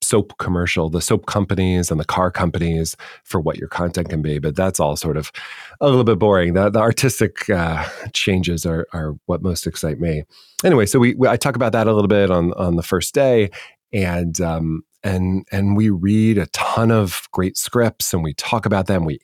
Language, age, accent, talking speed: English, 30-49, American, 210 wpm